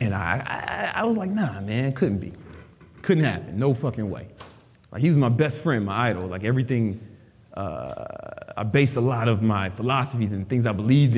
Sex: male